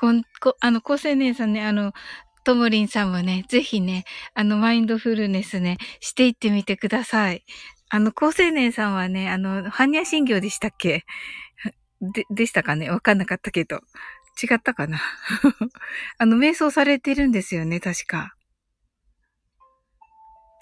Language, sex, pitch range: Japanese, female, 200-280 Hz